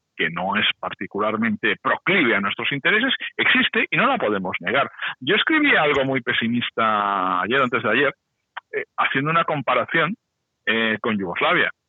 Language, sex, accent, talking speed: Spanish, male, Spanish, 150 wpm